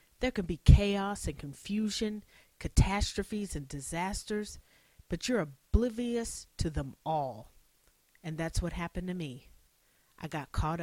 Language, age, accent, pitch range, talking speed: English, 40-59, American, 150-195 Hz, 135 wpm